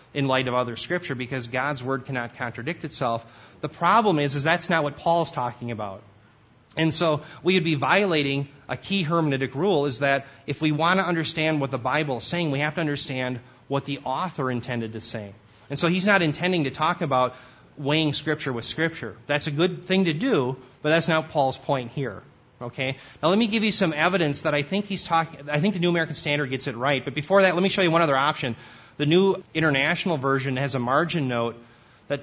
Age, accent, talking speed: 30-49, American, 220 wpm